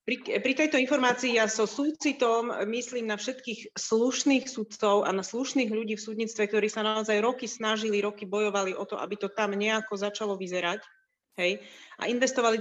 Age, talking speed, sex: 30-49, 170 wpm, female